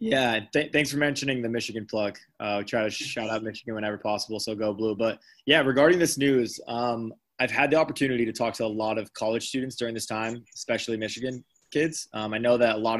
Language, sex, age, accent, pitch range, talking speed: English, male, 20-39, American, 110-125 Hz, 220 wpm